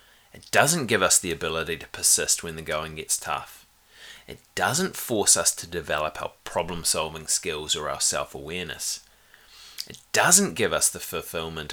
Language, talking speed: English, 160 wpm